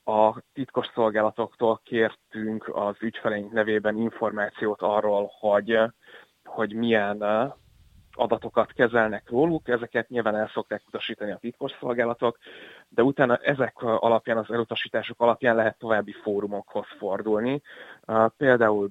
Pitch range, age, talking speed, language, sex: 105-120 Hz, 30-49, 105 wpm, Hungarian, male